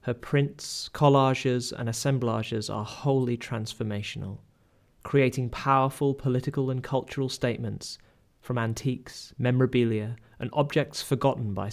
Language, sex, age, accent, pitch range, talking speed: English, male, 30-49, British, 115-140 Hz, 110 wpm